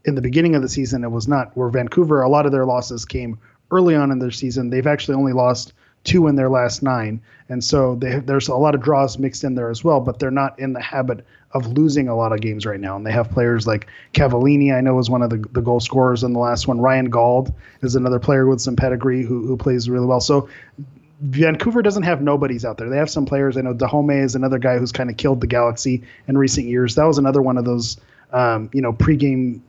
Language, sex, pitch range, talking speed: English, male, 120-145 Hz, 255 wpm